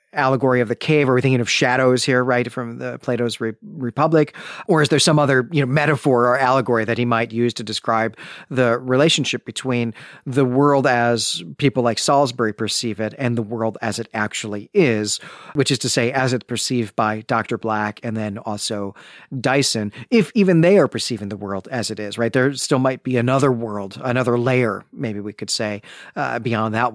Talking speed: 205 wpm